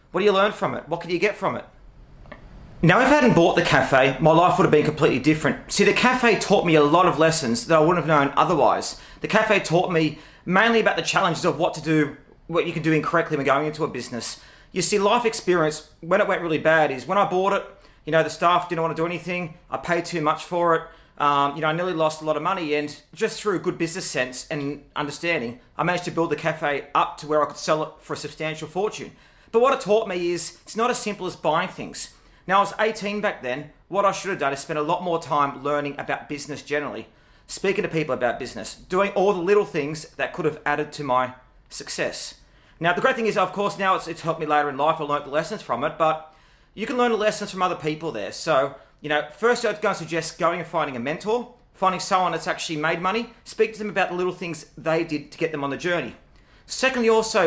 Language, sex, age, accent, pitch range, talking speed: English, male, 30-49, Australian, 150-190 Hz, 250 wpm